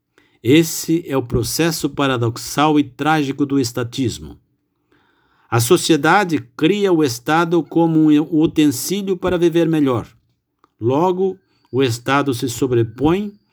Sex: male